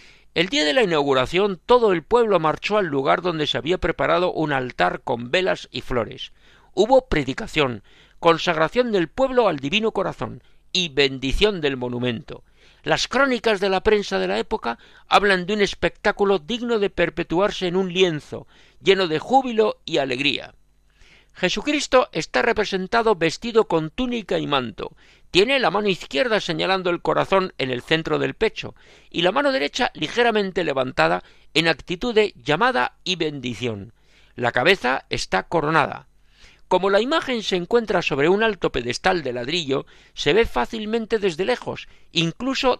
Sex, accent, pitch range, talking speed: male, Spanish, 150-220 Hz, 155 wpm